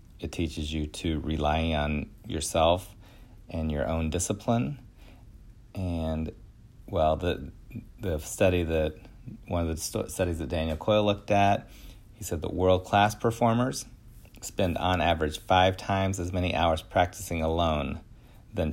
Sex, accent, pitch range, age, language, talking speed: male, American, 80-105 Hz, 40-59, English, 135 wpm